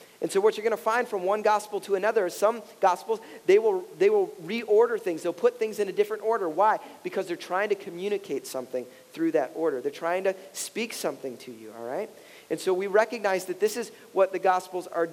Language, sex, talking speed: English, male, 230 wpm